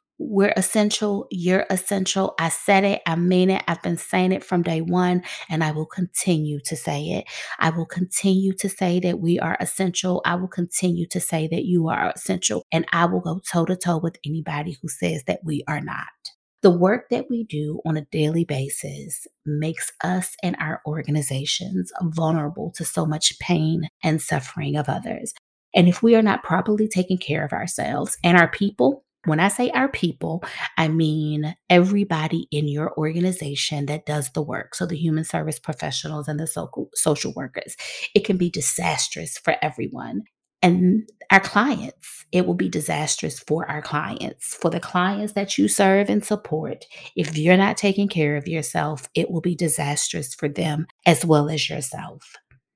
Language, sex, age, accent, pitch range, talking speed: English, female, 30-49, American, 155-190 Hz, 175 wpm